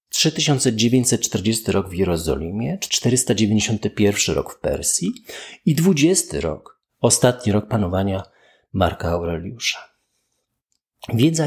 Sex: male